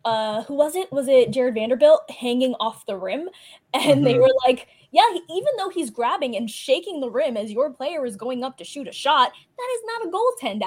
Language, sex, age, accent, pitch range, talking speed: English, female, 20-39, American, 225-295 Hz, 225 wpm